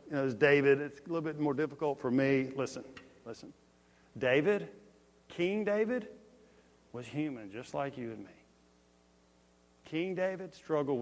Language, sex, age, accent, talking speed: English, male, 50-69, American, 145 wpm